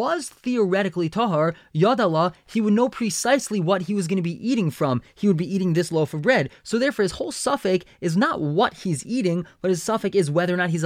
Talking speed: 230 wpm